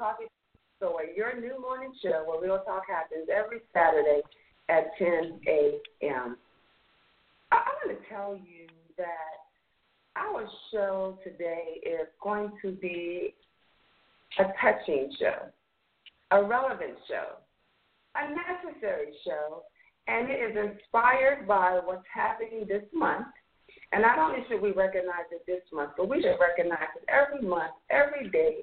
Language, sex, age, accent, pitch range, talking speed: English, female, 50-69, American, 180-295 Hz, 130 wpm